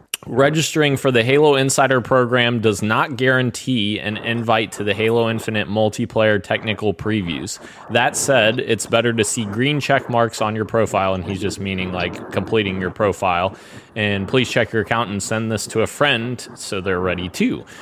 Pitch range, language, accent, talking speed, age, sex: 105-130 Hz, English, American, 180 wpm, 20-39, male